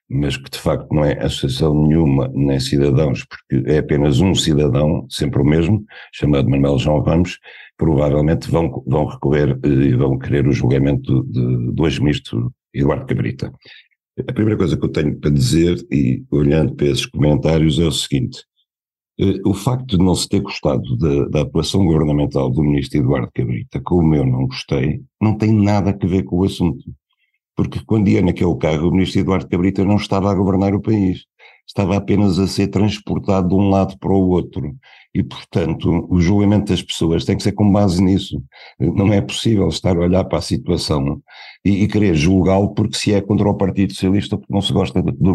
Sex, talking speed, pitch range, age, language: male, 190 wpm, 75-100 Hz, 60-79, Portuguese